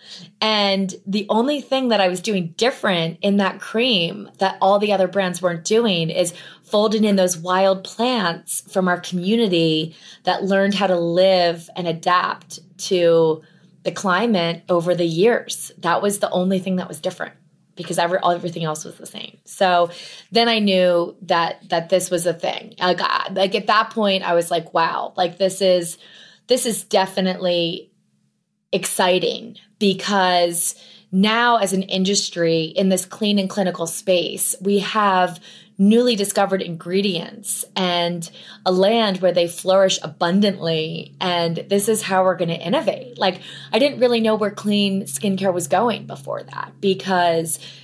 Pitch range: 175-205 Hz